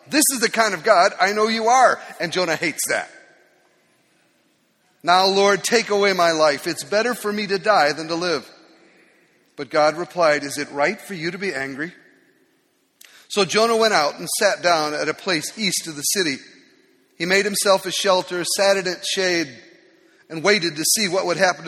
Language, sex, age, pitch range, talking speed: English, male, 40-59, 165-225 Hz, 195 wpm